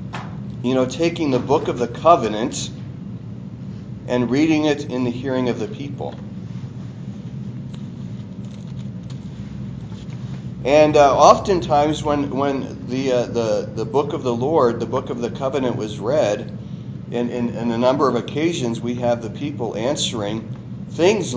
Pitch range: 110-145 Hz